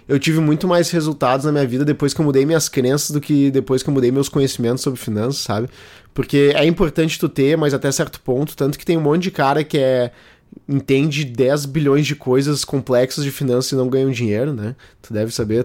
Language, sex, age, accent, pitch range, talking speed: Portuguese, male, 20-39, Brazilian, 125-160 Hz, 225 wpm